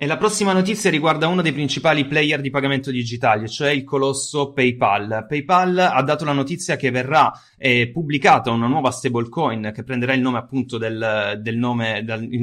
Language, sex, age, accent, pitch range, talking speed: Italian, male, 30-49, native, 115-145 Hz, 185 wpm